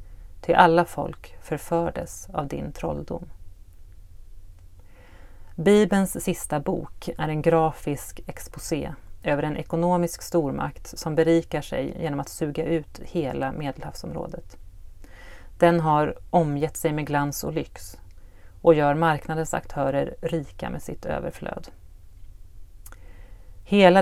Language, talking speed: Swedish, 110 wpm